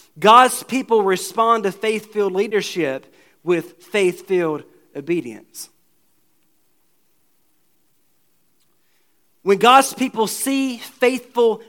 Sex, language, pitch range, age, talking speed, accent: male, English, 175-225 Hz, 40-59, 70 wpm, American